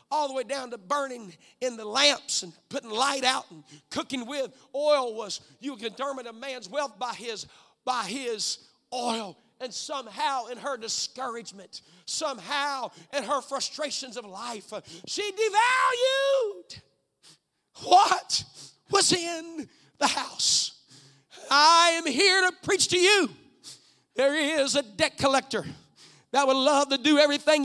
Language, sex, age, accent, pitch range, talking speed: English, male, 50-69, American, 255-360 Hz, 140 wpm